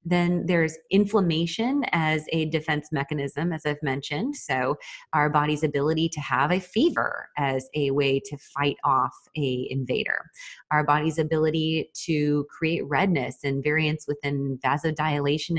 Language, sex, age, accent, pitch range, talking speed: English, female, 30-49, American, 145-165 Hz, 140 wpm